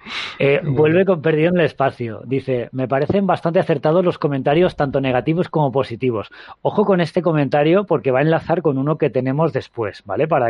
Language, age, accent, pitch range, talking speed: Spanish, 20-39, Spanish, 130-170 Hz, 190 wpm